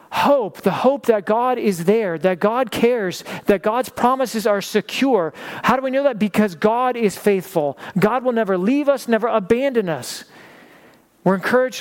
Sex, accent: male, American